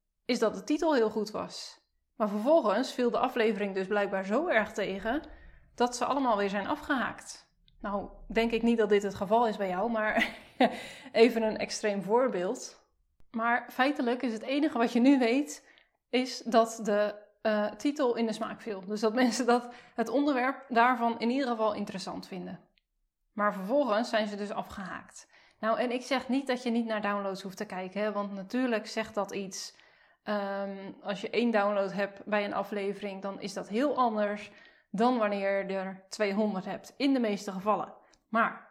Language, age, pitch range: Dutch, 20-39, 205-250 Hz